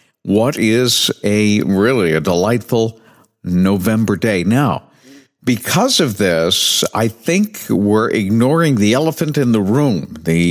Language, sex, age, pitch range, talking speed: English, male, 50-69, 105-135 Hz, 125 wpm